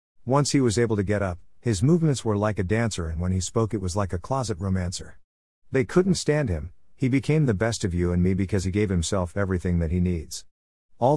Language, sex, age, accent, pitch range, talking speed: English, male, 50-69, American, 90-120 Hz, 235 wpm